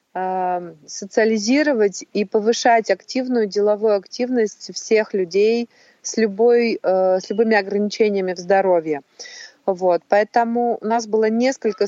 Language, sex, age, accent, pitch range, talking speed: Russian, female, 30-49, native, 205-245 Hz, 95 wpm